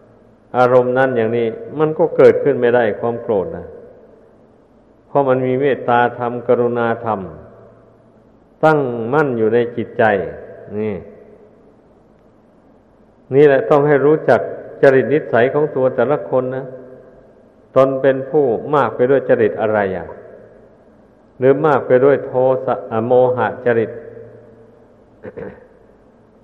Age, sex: 60-79, male